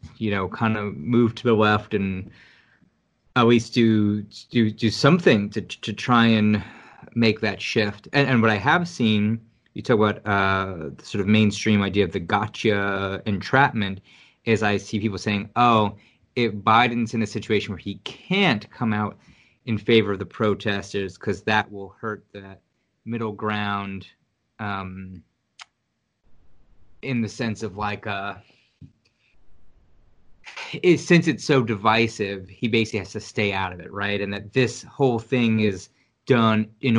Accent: American